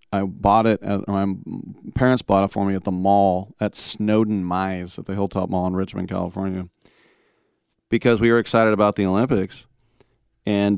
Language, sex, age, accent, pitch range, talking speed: English, male, 40-59, American, 95-115 Hz, 165 wpm